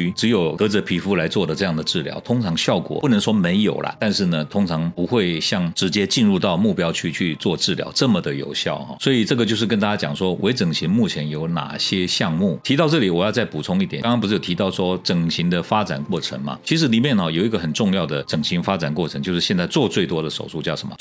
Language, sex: Chinese, male